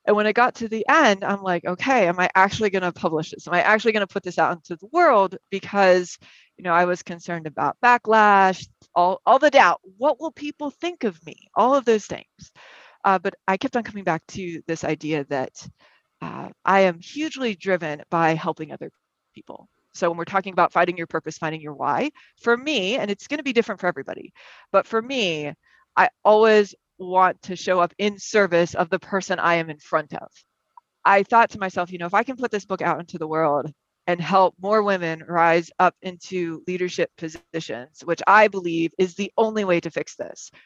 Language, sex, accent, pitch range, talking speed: English, female, American, 170-210 Hz, 215 wpm